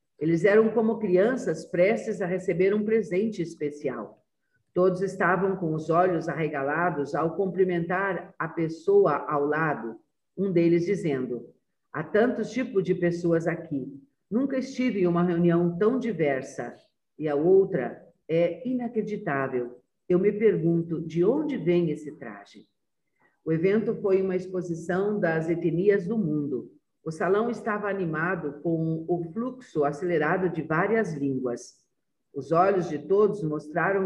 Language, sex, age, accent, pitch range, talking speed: Portuguese, female, 50-69, Brazilian, 155-205 Hz, 135 wpm